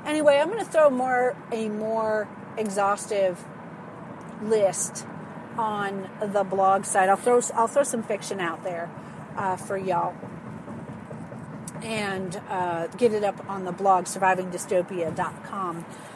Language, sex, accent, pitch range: English, female, American, 195-230 Hz